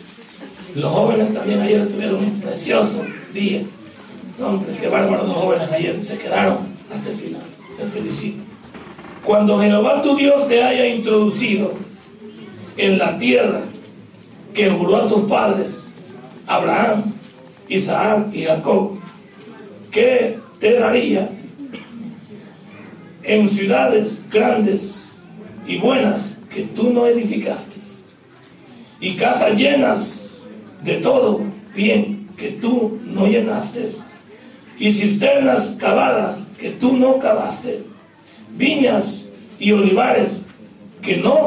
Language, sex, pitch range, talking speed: Spanish, male, 200-230 Hz, 105 wpm